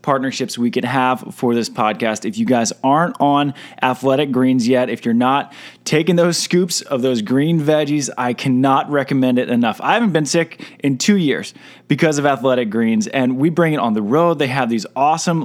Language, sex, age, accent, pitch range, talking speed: English, male, 20-39, American, 120-145 Hz, 200 wpm